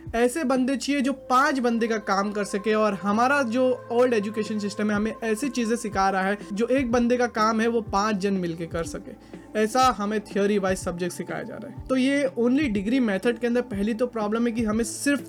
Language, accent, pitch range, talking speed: Hindi, native, 215-265 Hz, 230 wpm